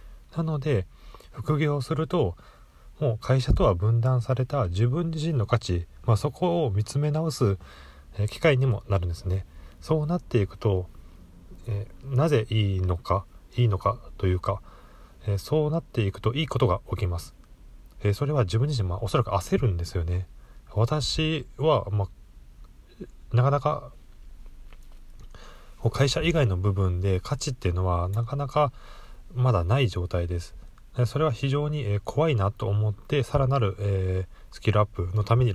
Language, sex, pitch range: Japanese, male, 95-130 Hz